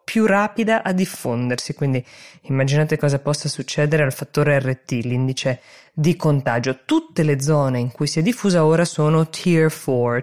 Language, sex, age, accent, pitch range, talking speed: Italian, female, 20-39, native, 135-175 Hz, 160 wpm